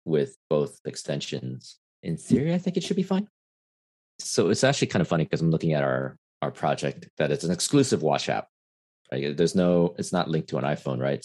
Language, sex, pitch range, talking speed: English, male, 65-90 Hz, 210 wpm